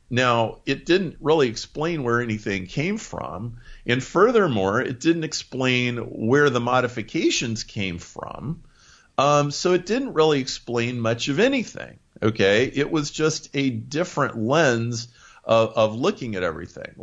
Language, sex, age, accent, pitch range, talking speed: English, male, 40-59, American, 105-140 Hz, 140 wpm